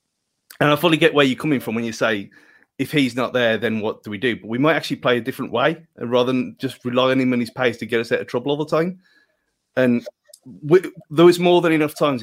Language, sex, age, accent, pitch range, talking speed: English, male, 30-49, British, 125-155 Hz, 265 wpm